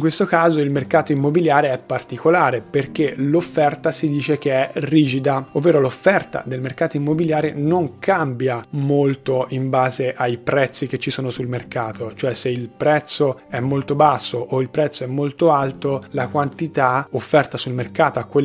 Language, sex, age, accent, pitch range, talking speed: Italian, male, 30-49, native, 125-150 Hz, 165 wpm